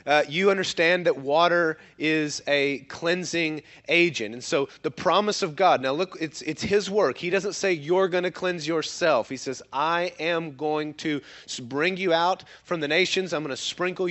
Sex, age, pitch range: male, 30-49, 150-185 Hz